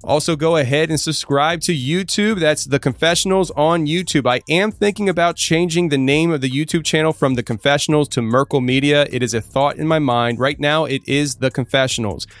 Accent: American